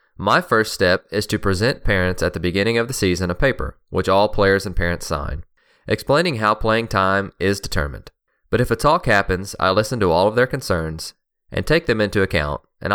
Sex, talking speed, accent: male, 210 wpm, American